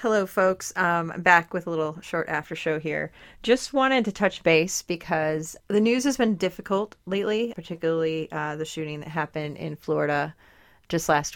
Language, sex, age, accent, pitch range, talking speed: English, female, 30-49, American, 155-180 Hz, 175 wpm